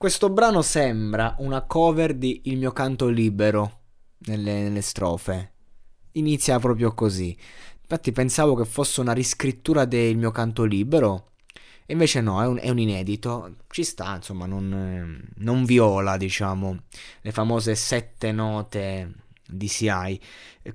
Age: 20-39